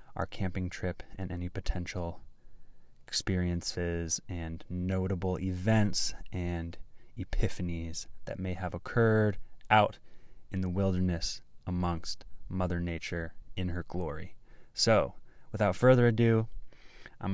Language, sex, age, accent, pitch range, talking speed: English, male, 20-39, American, 90-105 Hz, 105 wpm